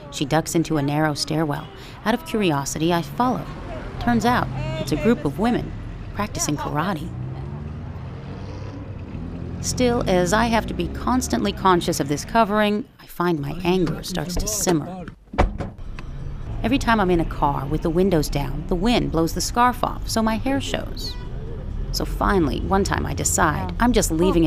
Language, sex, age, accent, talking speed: English, female, 40-59, American, 165 wpm